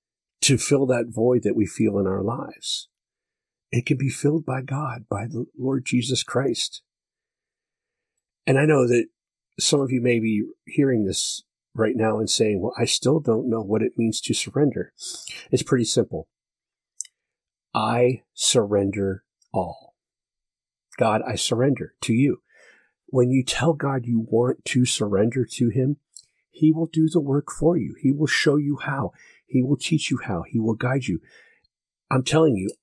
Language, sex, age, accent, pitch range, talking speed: English, male, 50-69, American, 115-150 Hz, 165 wpm